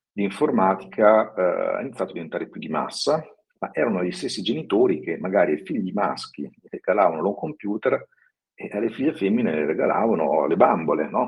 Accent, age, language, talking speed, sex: native, 50-69, Italian, 160 wpm, male